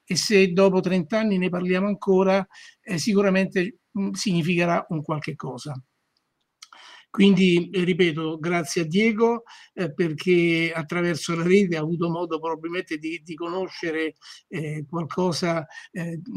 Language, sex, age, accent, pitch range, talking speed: Italian, male, 60-79, native, 165-195 Hz, 125 wpm